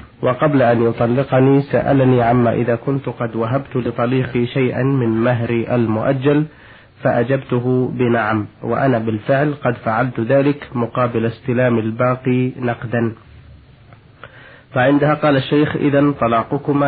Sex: male